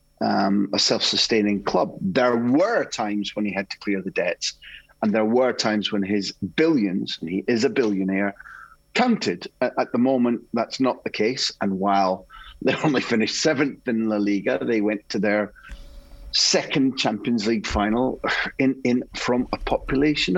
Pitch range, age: 105-135 Hz, 30-49